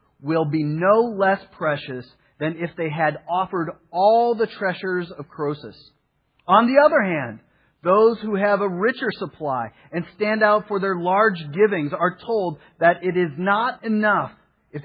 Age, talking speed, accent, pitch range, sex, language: 40-59, 160 wpm, American, 130-180 Hz, male, English